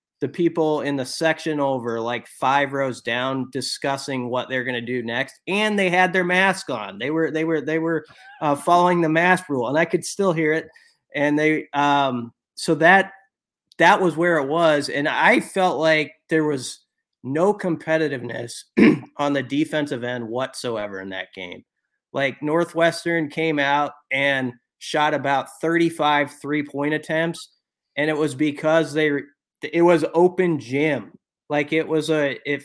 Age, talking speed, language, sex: 30-49, 165 wpm, English, male